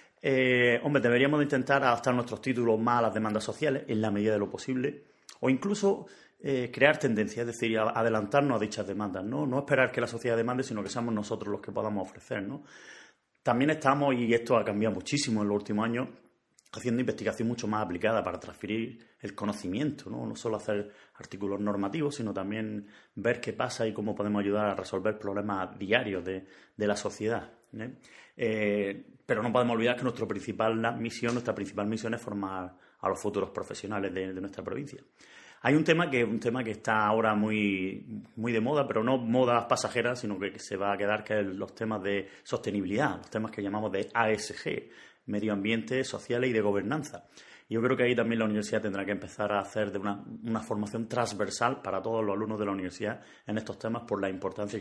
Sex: male